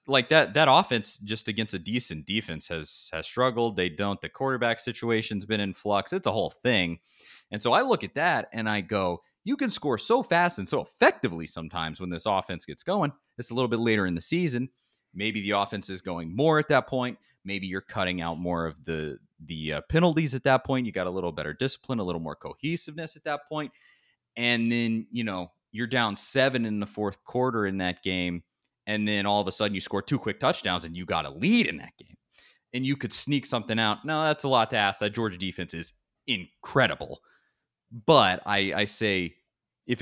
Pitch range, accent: 95-130 Hz, American